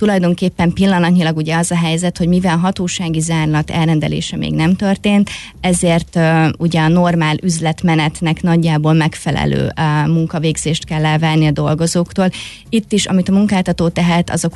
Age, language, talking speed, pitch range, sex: 20-39, Hungarian, 145 wpm, 160-180 Hz, female